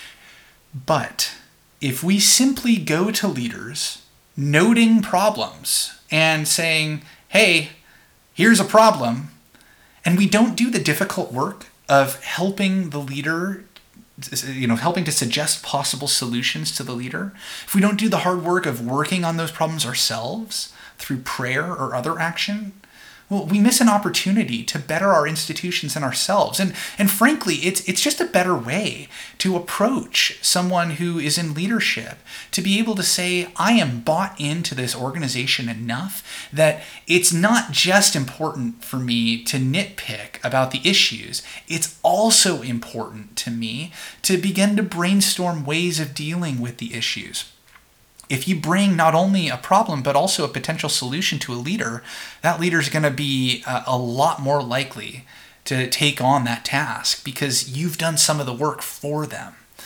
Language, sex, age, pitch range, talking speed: English, male, 30-49, 135-185 Hz, 160 wpm